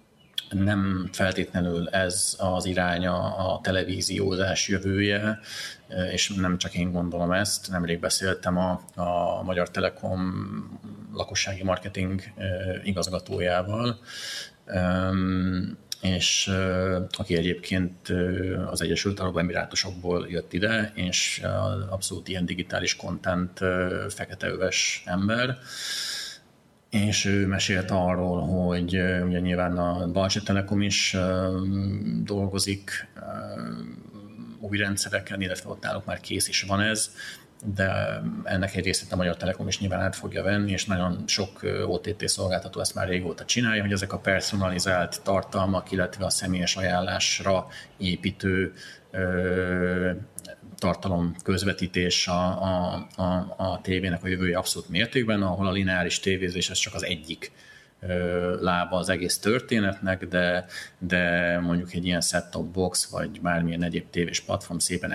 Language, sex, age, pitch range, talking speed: Hungarian, male, 30-49, 90-95 Hz, 120 wpm